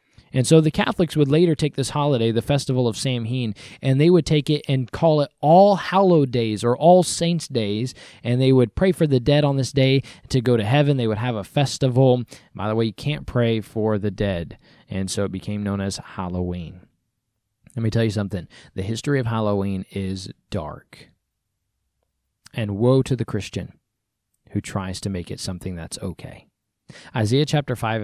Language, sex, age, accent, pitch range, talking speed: English, male, 20-39, American, 105-135 Hz, 195 wpm